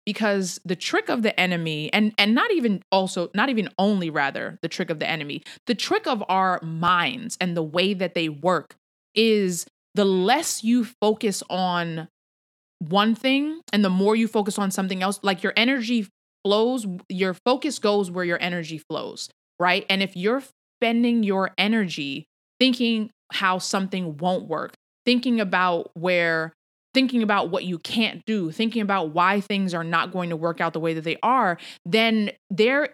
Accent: American